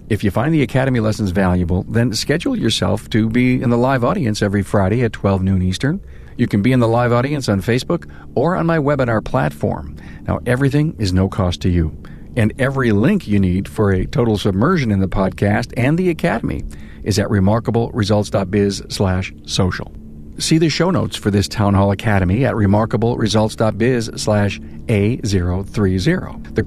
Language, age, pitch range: English, 50-69, 95-125 Hz